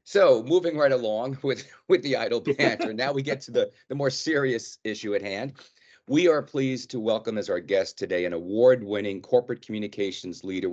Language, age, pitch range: English, 40-59, 100-130 Hz